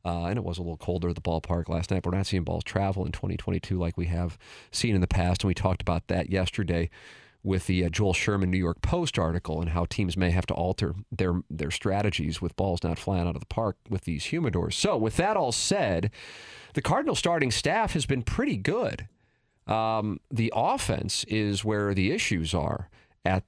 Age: 40-59